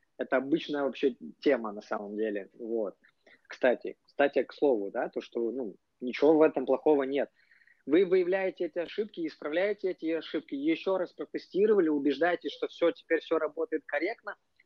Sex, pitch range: male, 145-185 Hz